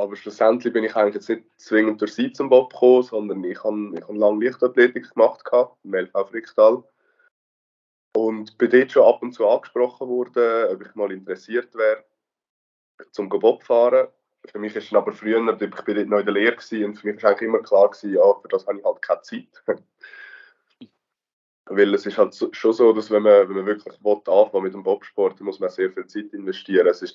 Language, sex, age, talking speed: German, male, 20-39, 210 wpm